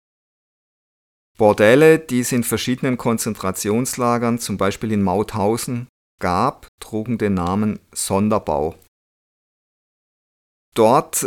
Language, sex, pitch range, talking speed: German, male, 95-120 Hz, 85 wpm